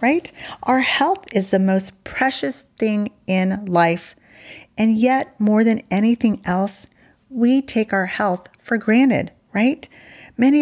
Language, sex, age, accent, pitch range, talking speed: English, female, 40-59, American, 160-220 Hz, 135 wpm